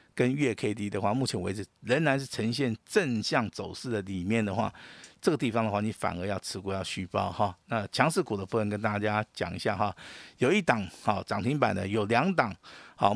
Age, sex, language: 50-69, male, Chinese